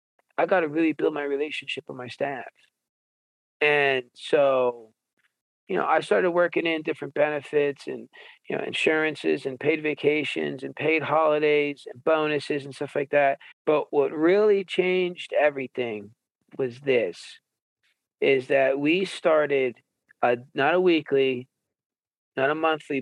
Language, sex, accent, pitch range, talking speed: English, male, American, 135-155 Hz, 140 wpm